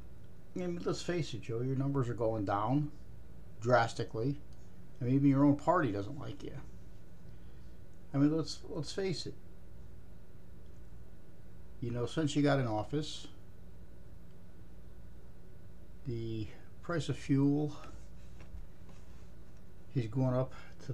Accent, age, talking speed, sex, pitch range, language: American, 50-69, 120 wpm, male, 105-140 Hz, English